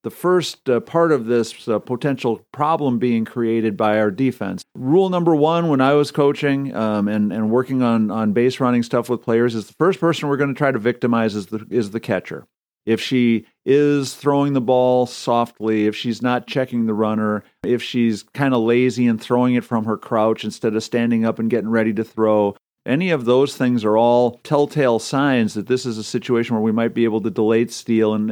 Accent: American